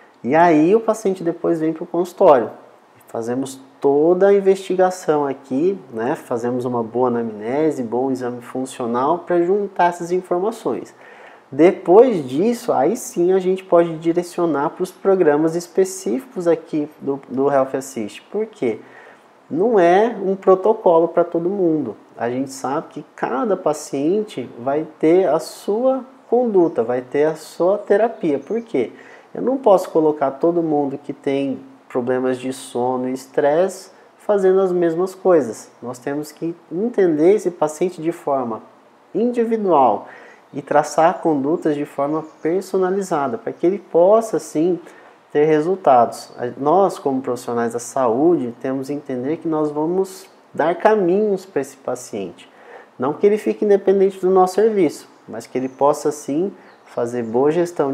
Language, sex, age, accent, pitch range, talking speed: Portuguese, male, 30-49, Brazilian, 140-190 Hz, 145 wpm